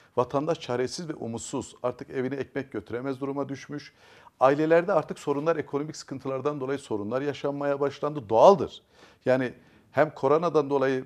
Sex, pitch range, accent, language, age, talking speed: male, 120-160 Hz, native, Turkish, 50-69, 130 wpm